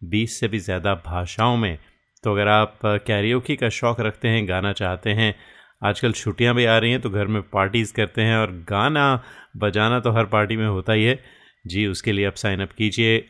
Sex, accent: male, native